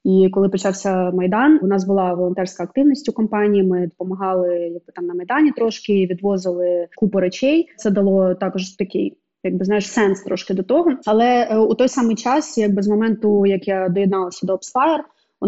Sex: female